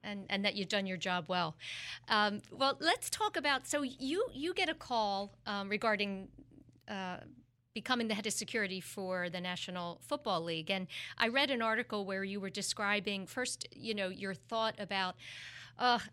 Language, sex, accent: English, female, American